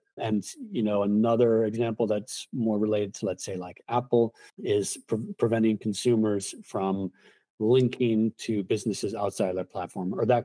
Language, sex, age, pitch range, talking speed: English, male, 40-59, 100-115 Hz, 150 wpm